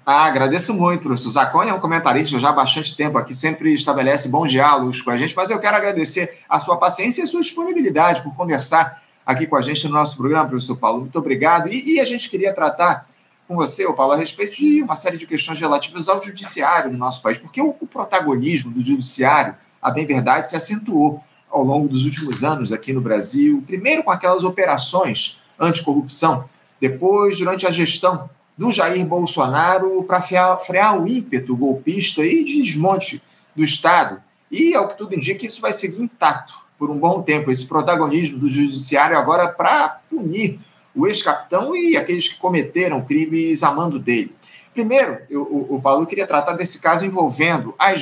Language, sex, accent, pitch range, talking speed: Portuguese, male, Brazilian, 145-190 Hz, 180 wpm